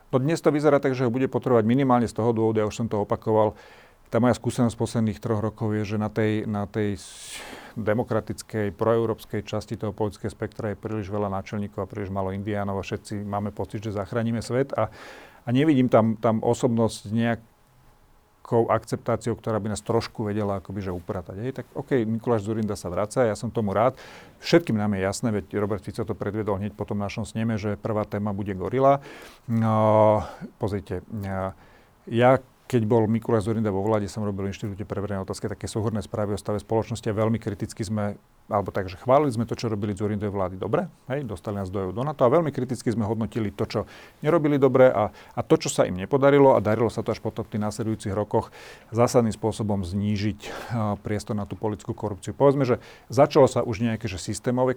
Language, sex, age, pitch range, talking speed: Slovak, male, 40-59, 105-120 Hz, 200 wpm